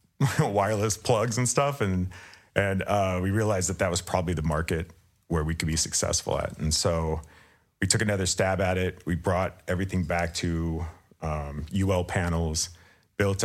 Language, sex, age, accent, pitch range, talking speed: English, male, 40-59, American, 85-100 Hz, 170 wpm